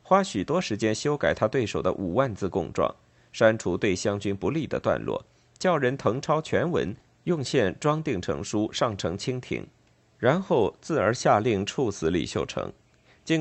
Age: 50-69